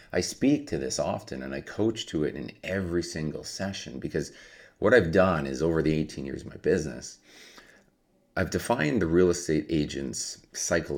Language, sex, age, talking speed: English, male, 40-59, 180 wpm